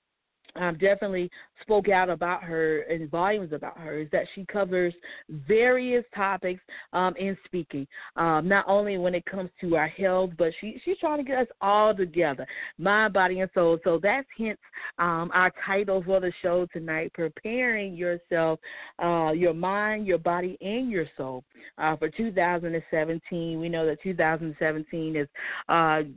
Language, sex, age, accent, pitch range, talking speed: English, female, 40-59, American, 165-205 Hz, 155 wpm